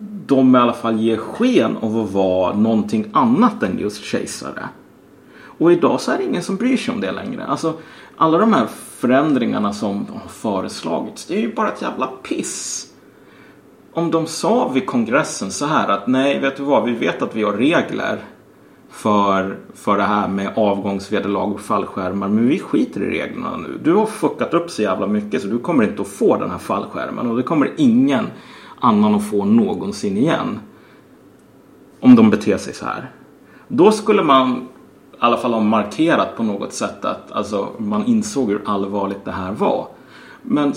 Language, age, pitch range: Swedish, 30-49, 105-170 Hz